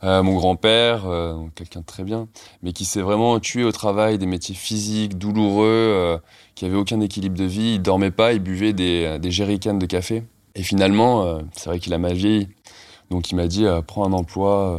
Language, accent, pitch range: French, French, 90-110 Hz